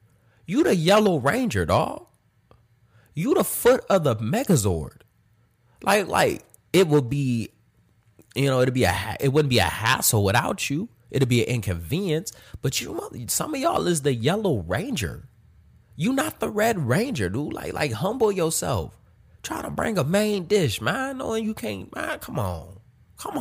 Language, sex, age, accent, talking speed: English, male, 20-39, American, 165 wpm